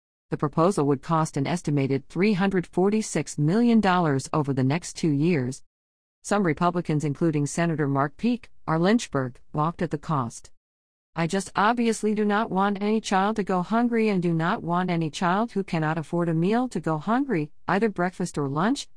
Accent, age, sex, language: American, 50-69, female, English